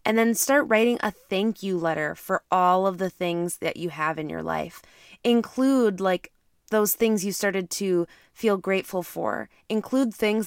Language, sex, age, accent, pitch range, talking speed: English, female, 20-39, American, 175-215 Hz, 180 wpm